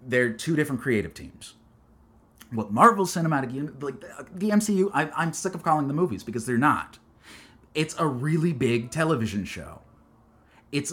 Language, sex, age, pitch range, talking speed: English, male, 30-49, 105-165 Hz, 160 wpm